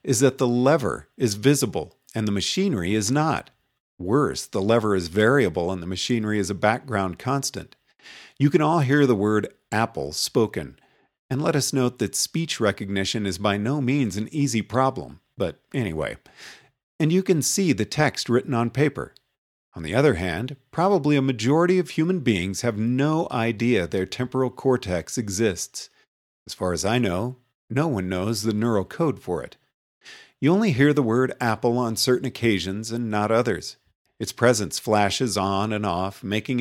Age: 50-69